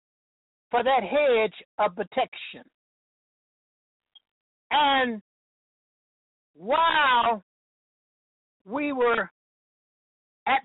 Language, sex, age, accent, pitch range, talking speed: English, male, 60-79, American, 230-280 Hz, 55 wpm